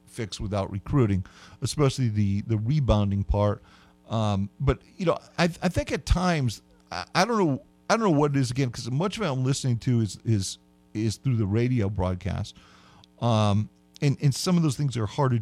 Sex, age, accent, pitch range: male, 50-69, American, 95-125 Hz